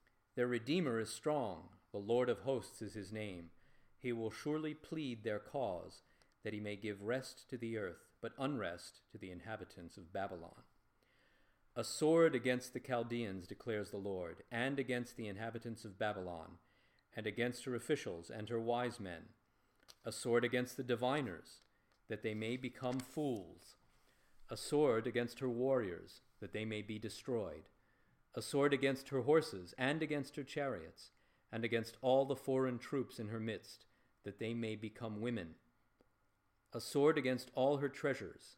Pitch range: 105-130 Hz